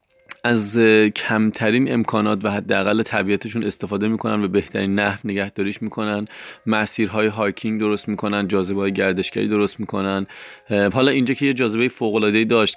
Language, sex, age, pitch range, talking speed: Persian, male, 30-49, 100-115 Hz, 140 wpm